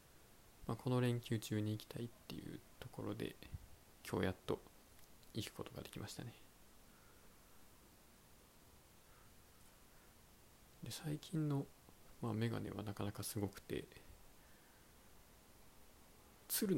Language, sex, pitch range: Japanese, male, 95-125 Hz